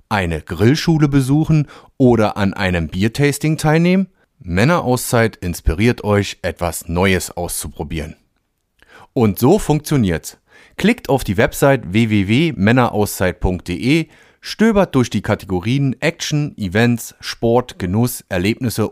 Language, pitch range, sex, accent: German, 95-135 Hz, male, German